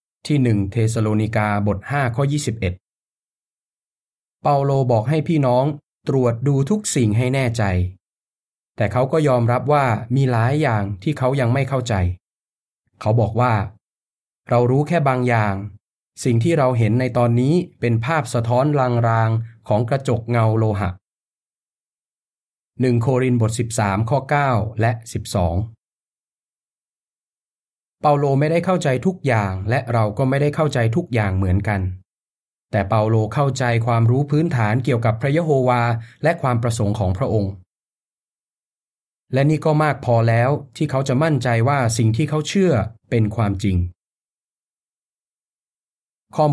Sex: male